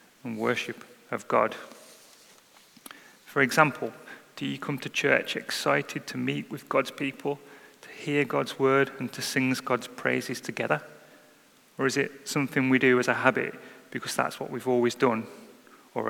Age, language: 30-49, English